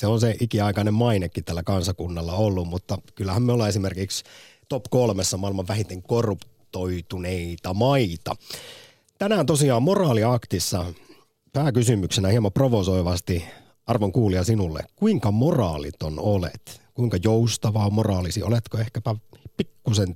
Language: Finnish